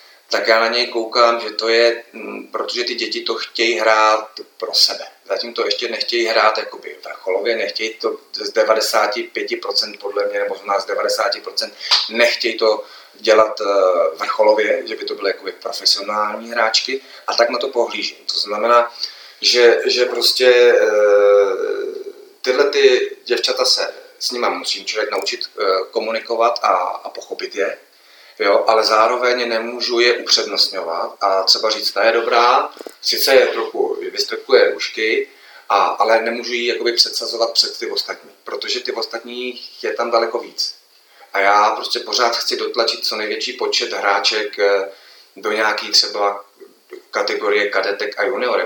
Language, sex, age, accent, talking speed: Czech, male, 30-49, native, 145 wpm